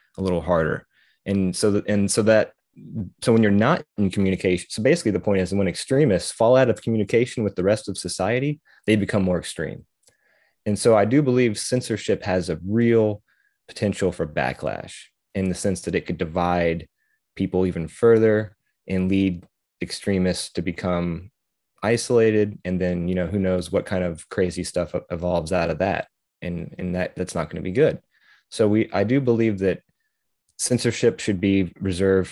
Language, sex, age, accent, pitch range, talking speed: English, male, 20-39, American, 90-105 Hz, 180 wpm